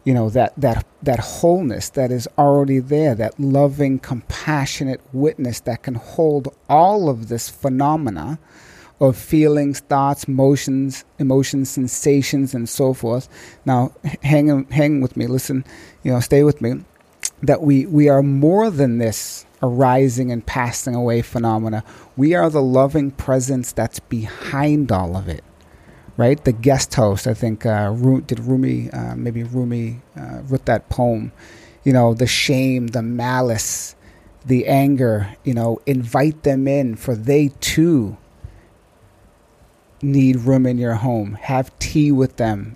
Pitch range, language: 115-140 Hz, English